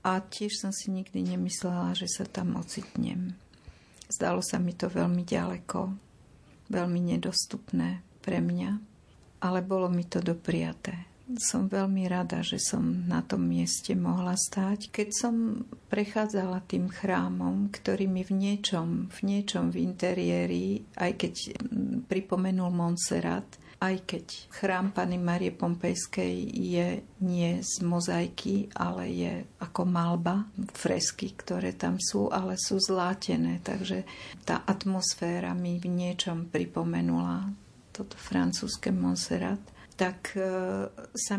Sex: female